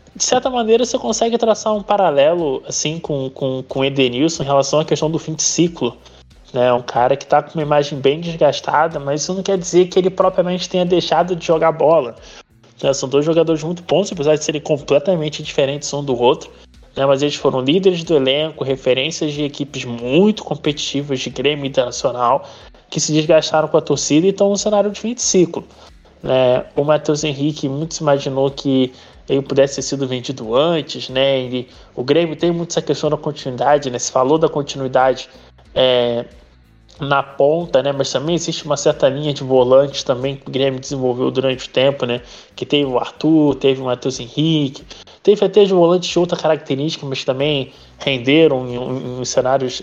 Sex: male